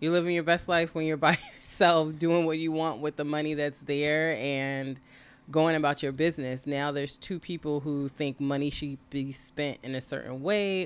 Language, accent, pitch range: English, American, 130-155 Hz